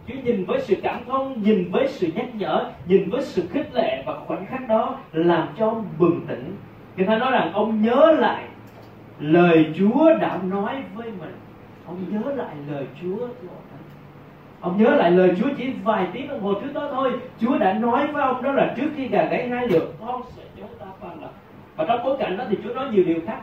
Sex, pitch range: male, 185-260 Hz